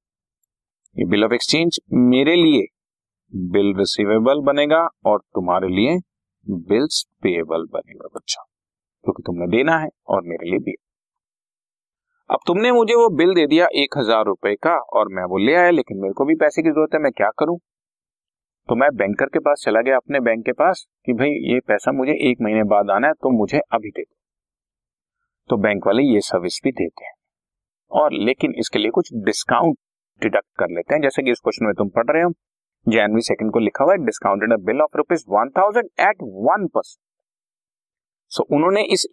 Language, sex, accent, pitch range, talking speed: Hindi, male, native, 100-165 Hz, 160 wpm